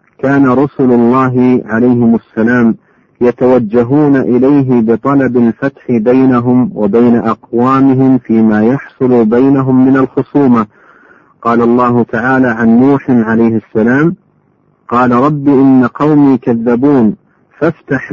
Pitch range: 120-135 Hz